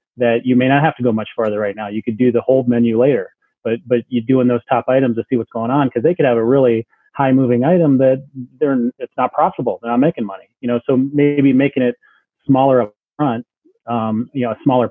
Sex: male